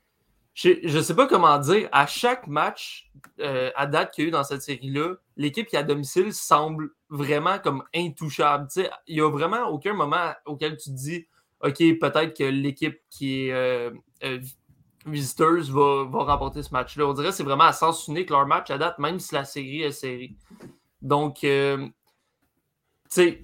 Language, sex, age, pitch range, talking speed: French, male, 20-39, 140-165 Hz, 190 wpm